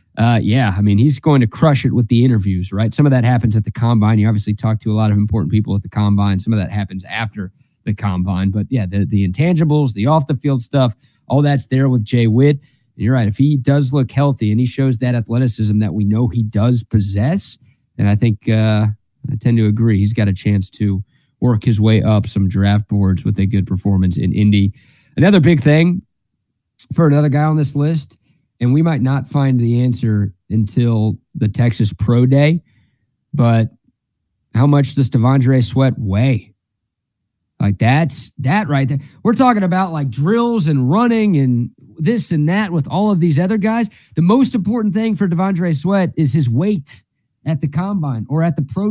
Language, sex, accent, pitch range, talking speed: English, male, American, 110-145 Hz, 200 wpm